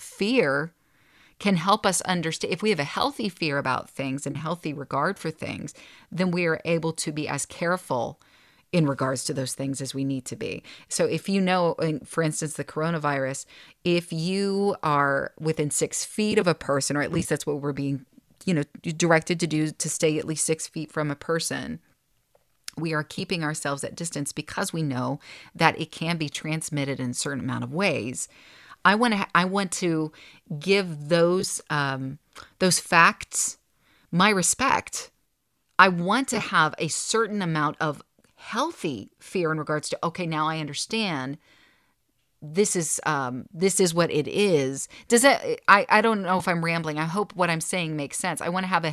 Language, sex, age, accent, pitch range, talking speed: English, female, 30-49, American, 145-180 Hz, 190 wpm